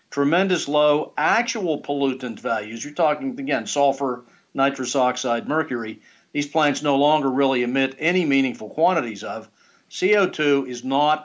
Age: 50-69